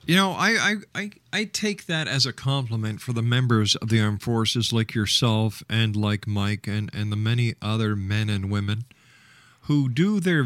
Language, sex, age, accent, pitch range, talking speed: English, male, 50-69, American, 110-140 Hz, 195 wpm